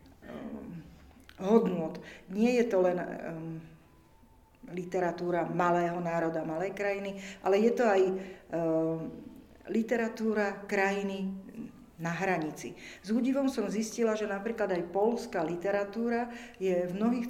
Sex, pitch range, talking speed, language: female, 170-220 Hz, 110 wpm, Slovak